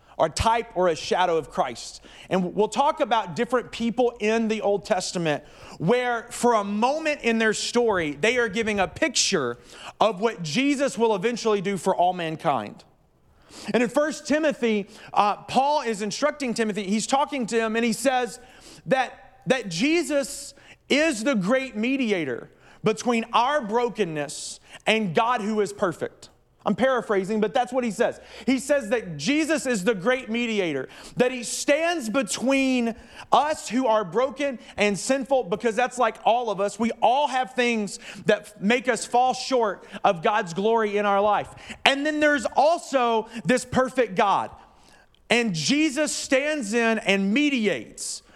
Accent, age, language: American, 40-59, English